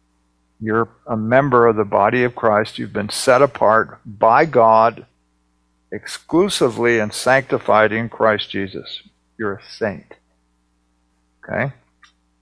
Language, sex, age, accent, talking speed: English, male, 50-69, American, 115 wpm